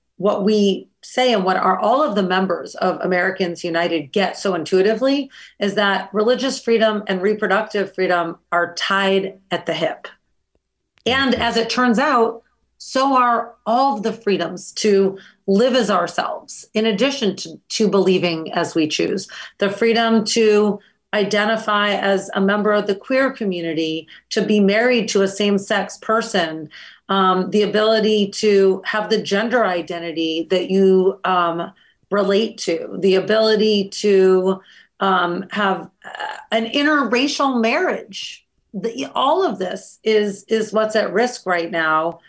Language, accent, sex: English, American, female